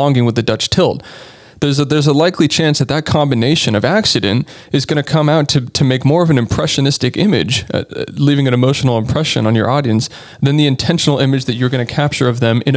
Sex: male